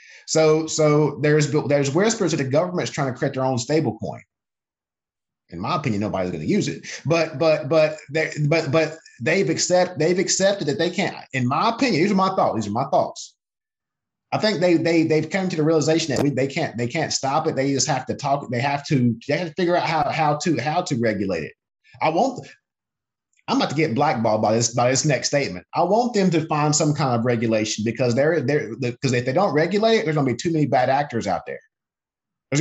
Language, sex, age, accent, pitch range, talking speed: English, male, 30-49, American, 135-180 Hz, 230 wpm